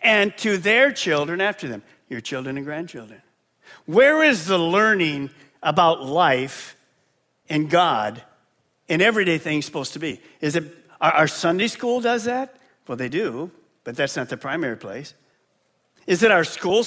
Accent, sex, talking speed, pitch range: American, male, 155 wpm, 140-190 Hz